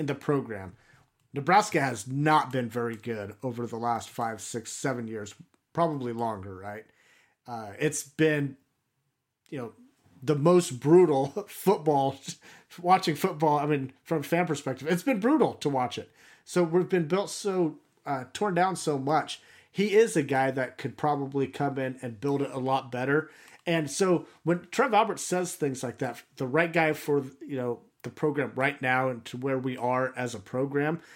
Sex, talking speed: male, 180 wpm